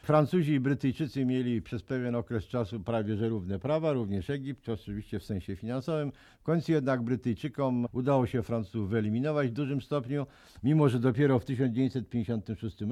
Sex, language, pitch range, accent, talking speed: male, Polish, 110-145 Hz, native, 160 wpm